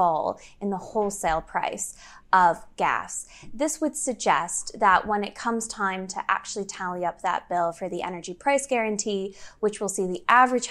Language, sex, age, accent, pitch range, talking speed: English, female, 10-29, American, 185-235 Hz, 170 wpm